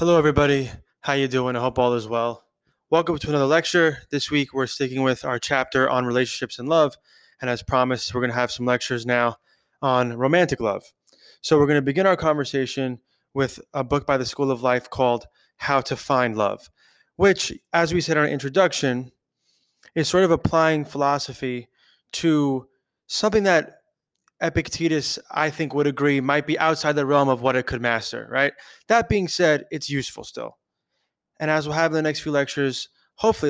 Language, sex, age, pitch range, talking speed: English, male, 20-39, 125-150 Hz, 190 wpm